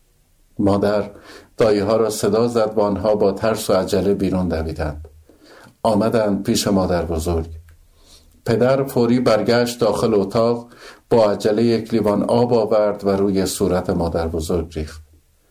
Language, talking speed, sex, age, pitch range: Persian, 130 wpm, male, 50-69, 80-110 Hz